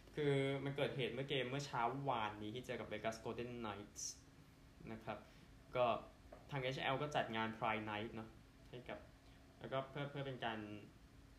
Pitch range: 110-130 Hz